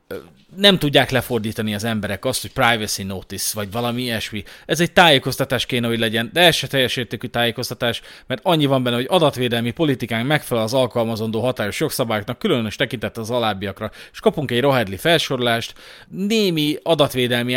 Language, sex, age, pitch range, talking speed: Hungarian, male, 30-49, 110-135 Hz, 155 wpm